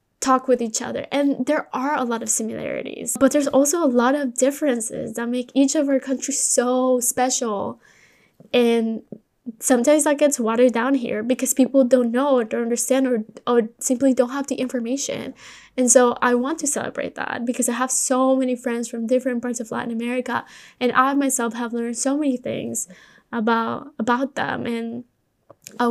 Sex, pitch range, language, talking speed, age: female, 235-260 Hz, Spanish, 185 wpm, 10-29